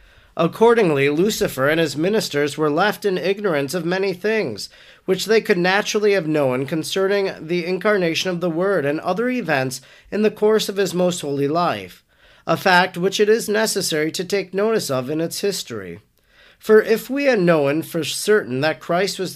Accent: American